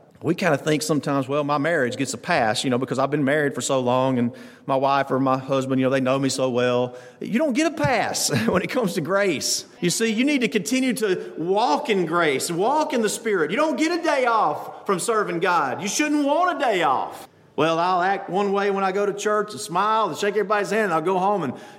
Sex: male